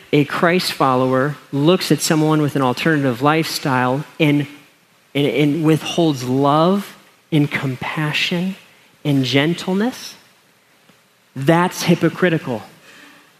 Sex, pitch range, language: male, 140-170 Hz, English